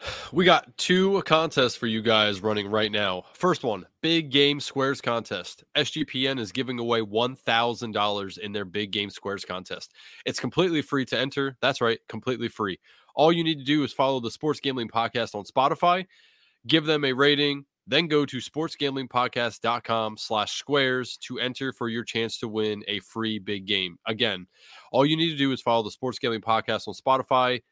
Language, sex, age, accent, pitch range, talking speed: English, male, 20-39, American, 115-145 Hz, 180 wpm